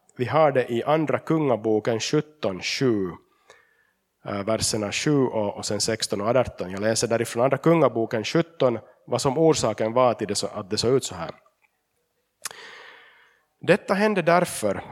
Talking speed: 150 wpm